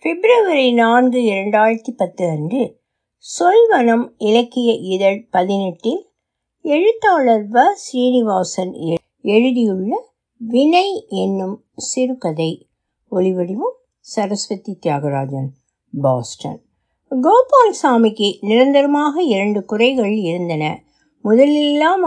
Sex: female